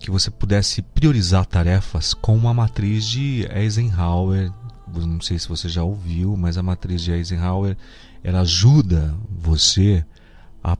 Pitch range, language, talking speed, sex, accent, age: 85-110 Hz, Portuguese, 140 wpm, male, Brazilian, 40-59